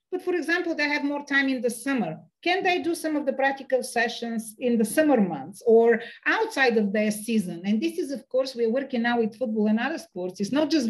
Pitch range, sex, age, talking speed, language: 220-275 Hz, female, 40-59, 235 wpm, English